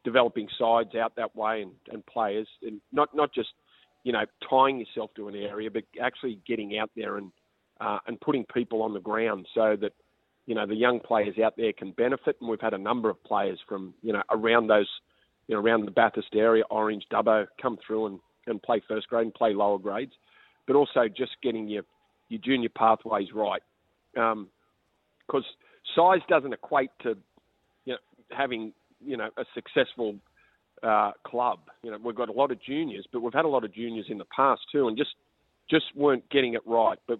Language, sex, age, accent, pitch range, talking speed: English, male, 40-59, Australian, 110-135 Hz, 200 wpm